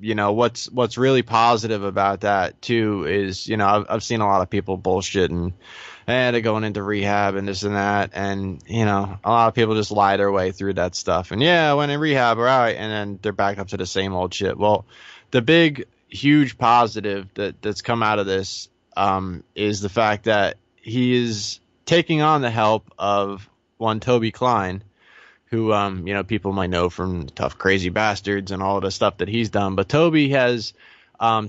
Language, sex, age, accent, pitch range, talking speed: English, male, 20-39, American, 100-115 Hz, 210 wpm